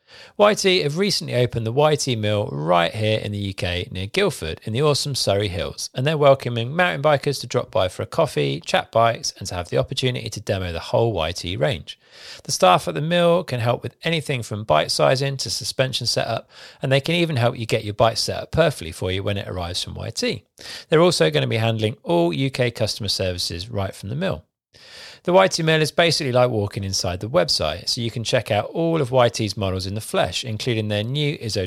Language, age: English, 40-59